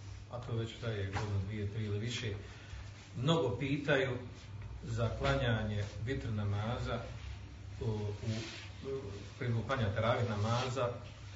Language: Croatian